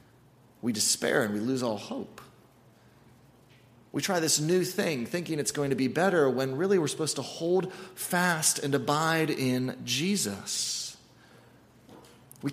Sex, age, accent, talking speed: male, 30-49, American, 145 wpm